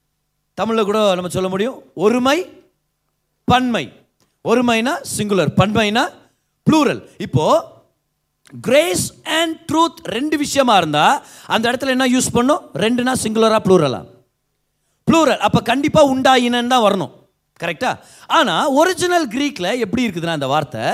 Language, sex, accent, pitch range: Tamil, male, native, 190-280 Hz